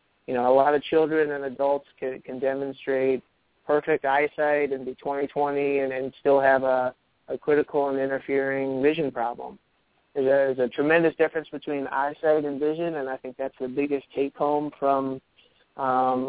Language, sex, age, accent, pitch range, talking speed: English, male, 20-39, American, 135-150 Hz, 160 wpm